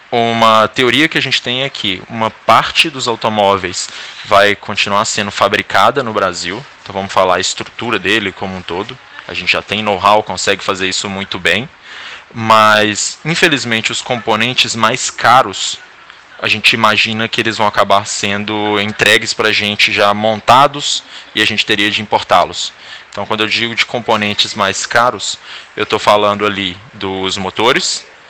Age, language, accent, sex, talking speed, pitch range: 20-39, Portuguese, Brazilian, male, 165 wpm, 100-115 Hz